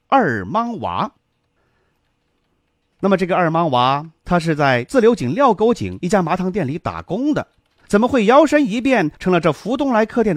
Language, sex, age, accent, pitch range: Chinese, male, 30-49, native, 115-185 Hz